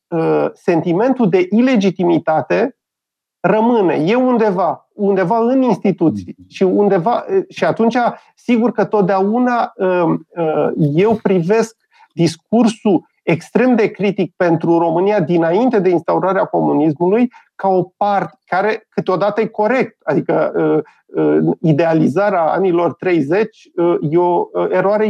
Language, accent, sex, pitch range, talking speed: Romanian, native, male, 160-210 Hz, 100 wpm